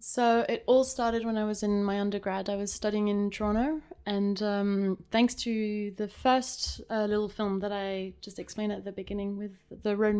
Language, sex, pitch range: English, female, 195-220 Hz